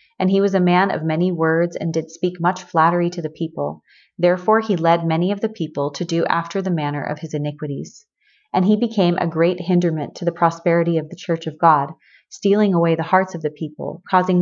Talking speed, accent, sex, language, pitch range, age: 220 wpm, American, female, English, 165-190 Hz, 30-49